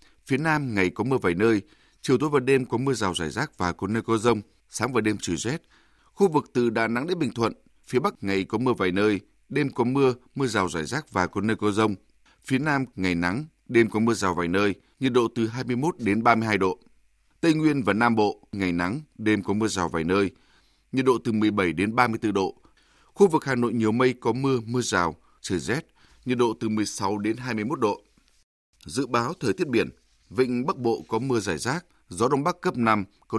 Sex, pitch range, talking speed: male, 100-130 Hz, 230 wpm